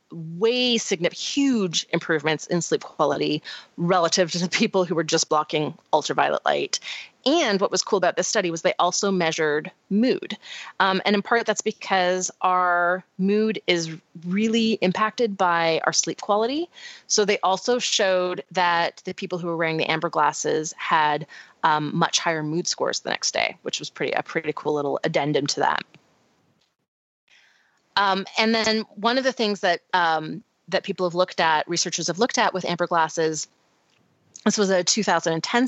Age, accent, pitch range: 30-49, American, 170-210 Hz